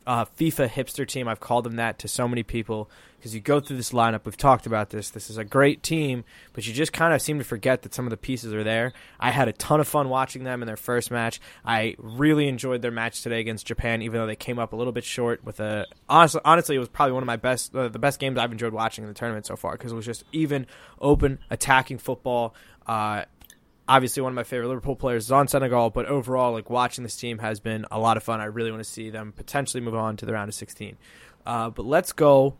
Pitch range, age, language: 115-140 Hz, 20-39, English